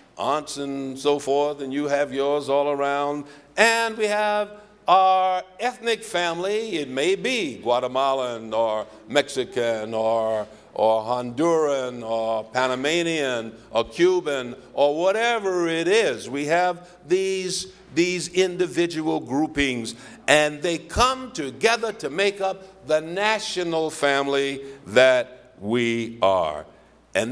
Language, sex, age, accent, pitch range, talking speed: English, male, 60-79, American, 125-180 Hz, 115 wpm